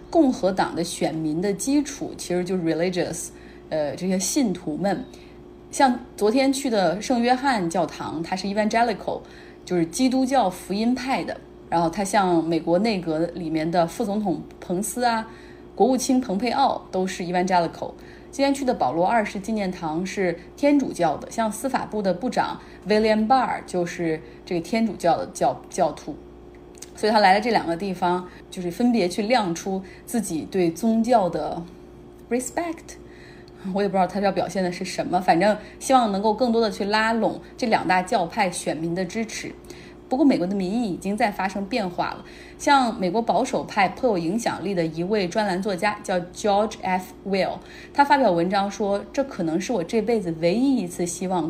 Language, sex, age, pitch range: Chinese, female, 30-49, 175-235 Hz